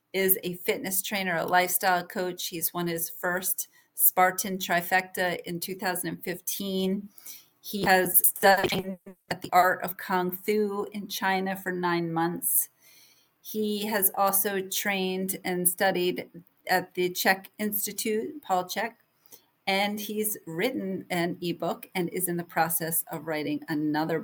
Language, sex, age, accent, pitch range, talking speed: English, female, 40-59, American, 165-195 Hz, 135 wpm